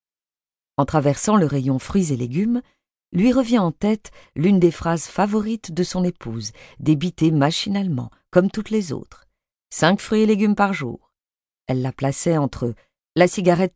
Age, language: 40-59, French